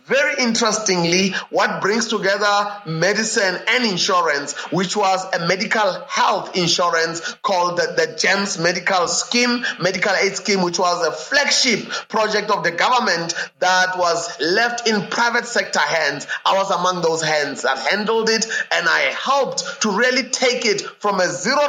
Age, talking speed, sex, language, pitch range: 30-49, 155 wpm, male, English, 185-245 Hz